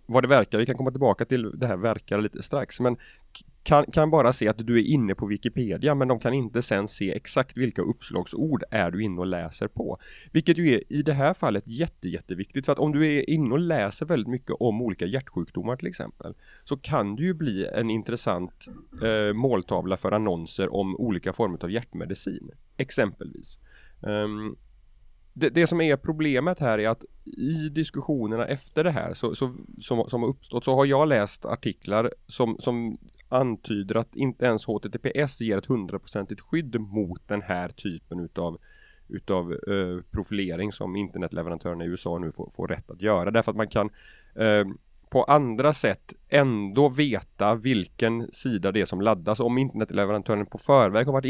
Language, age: Swedish, 30-49